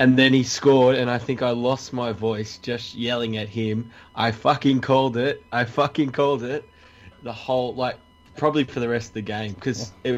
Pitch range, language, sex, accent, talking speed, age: 105-130 Hz, English, male, Australian, 205 wpm, 20-39